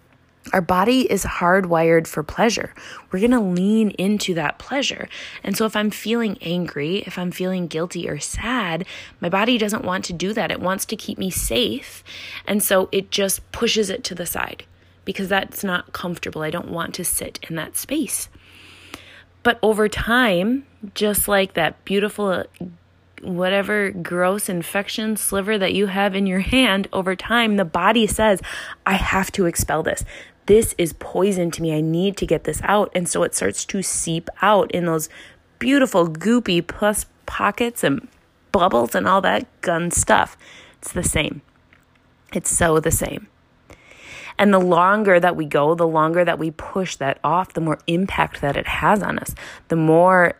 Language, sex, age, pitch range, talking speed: English, female, 20-39, 175-210 Hz, 175 wpm